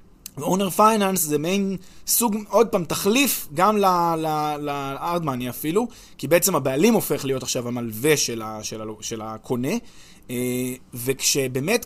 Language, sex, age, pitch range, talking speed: Hebrew, male, 20-39, 135-205 Hz, 135 wpm